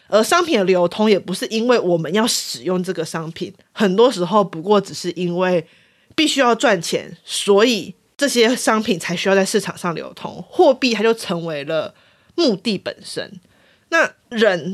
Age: 20-39